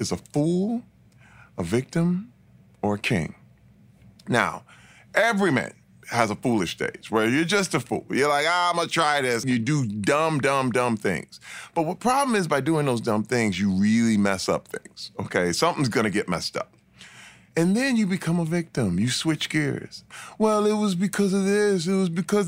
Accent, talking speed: American, 195 wpm